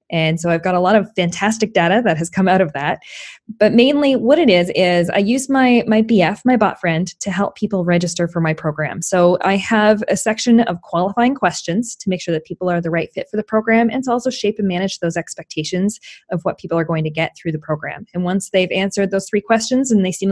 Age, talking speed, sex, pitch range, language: 20-39, 250 wpm, female, 175-225 Hz, English